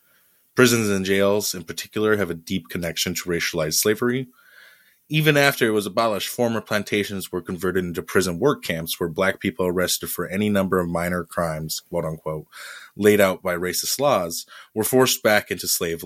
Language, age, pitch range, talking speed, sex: English, 20-39, 90-110 Hz, 170 wpm, male